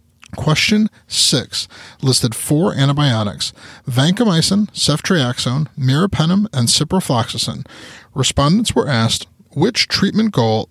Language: English